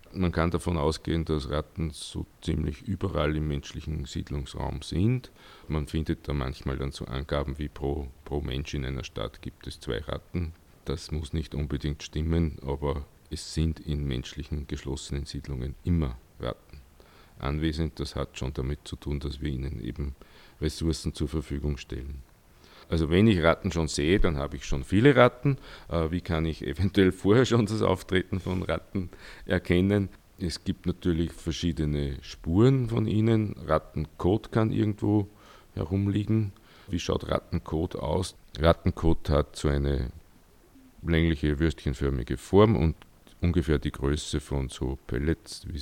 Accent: Austrian